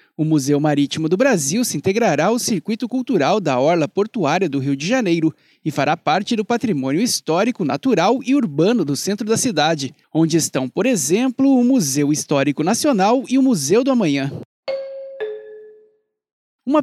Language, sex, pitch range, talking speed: Portuguese, male, 155-250 Hz, 155 wpm